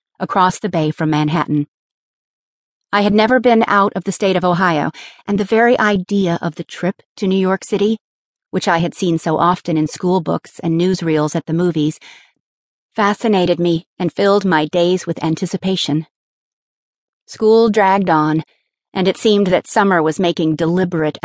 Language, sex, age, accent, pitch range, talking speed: English, female, 40-59, American, 160-205 Hz, 165 wpm